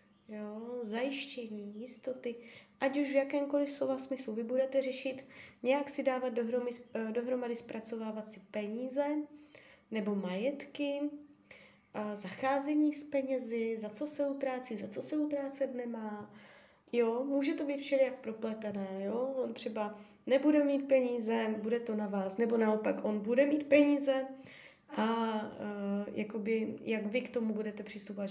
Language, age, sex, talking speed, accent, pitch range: Czech, 20-39, female, 125 wpm, native, 210-270 Hz